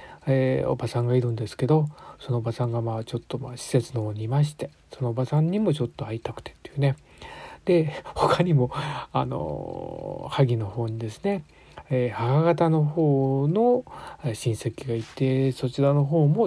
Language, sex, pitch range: Japanese, male, 125-155 Hz